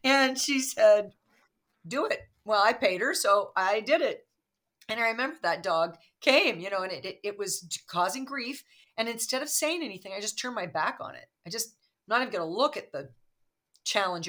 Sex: female